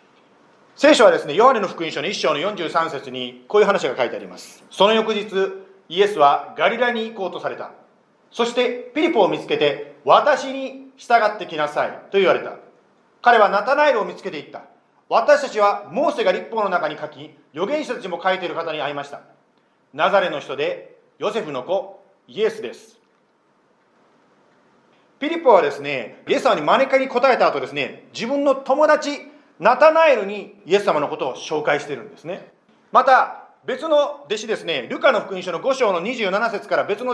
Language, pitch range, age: Japanese, 175-280 Hz, 40-59